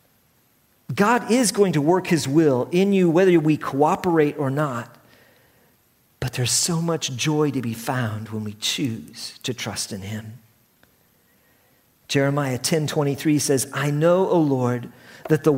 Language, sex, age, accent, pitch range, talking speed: English, male, 50-69, American, 120-165 Hz, 150 wpm